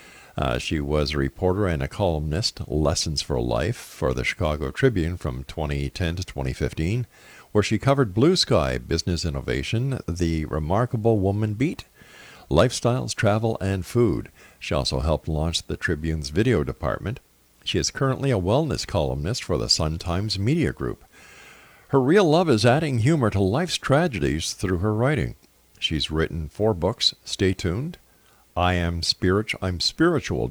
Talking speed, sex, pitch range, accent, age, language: 150 wpm, male, 80-120 Hz, American, 50-69, English